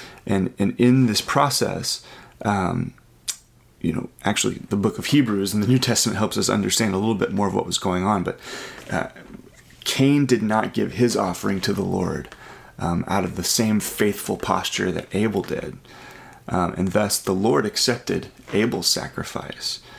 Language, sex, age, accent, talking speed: English, male, 30-49, American, 175 wpm